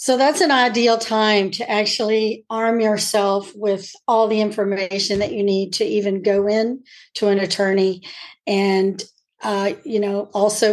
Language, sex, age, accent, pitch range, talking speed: English, female, 40-59, American, 205-250 Hz, 155 wpm